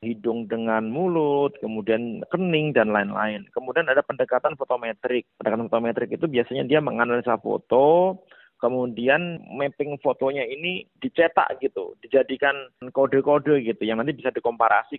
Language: Indonesian